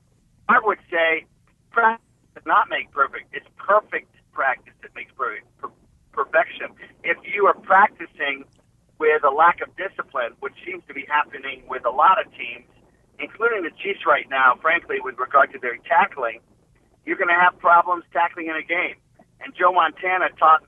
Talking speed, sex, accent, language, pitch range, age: 170 wpm, male, American, English, 140-180 Hz, 50-69